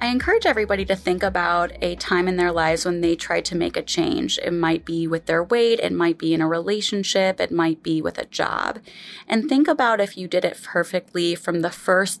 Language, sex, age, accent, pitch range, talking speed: English, female, 20-39, American, 170-215 Hz, 230 wpm